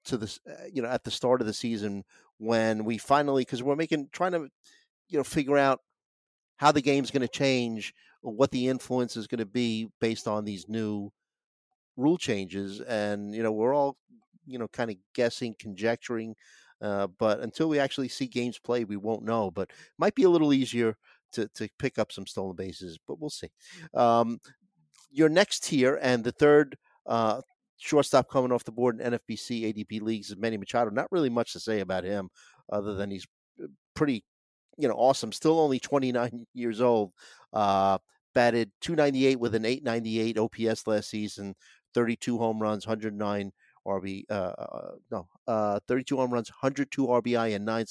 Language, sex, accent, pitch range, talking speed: English, male, American, 105-135 Hz, 180 wpm